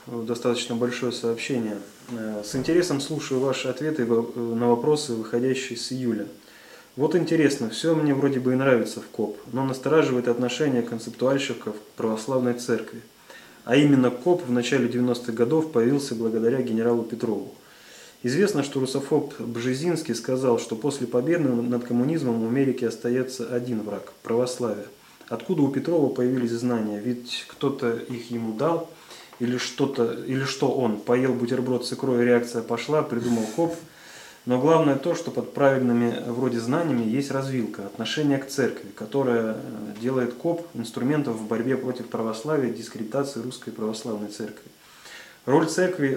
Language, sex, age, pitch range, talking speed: Russian, male, 20-39, 115-135 Hz, 140 wpm